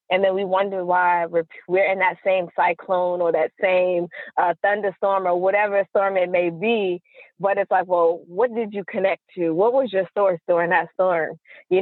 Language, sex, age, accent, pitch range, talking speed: English, female, 20-39, American, 175-205 Hz, 195 wpm